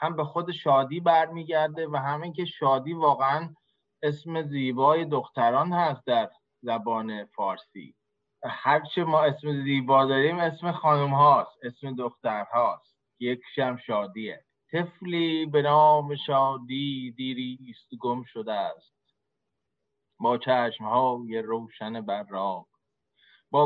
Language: Persian